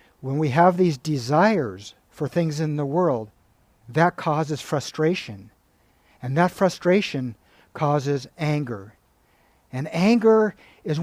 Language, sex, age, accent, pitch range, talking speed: English, male, 60-79, American, 125-175 Hz, 115 wpm